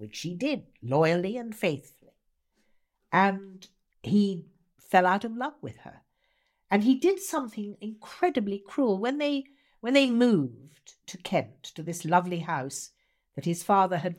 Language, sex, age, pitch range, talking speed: English, female, 60-79, 150-220 Hz, 145 wpm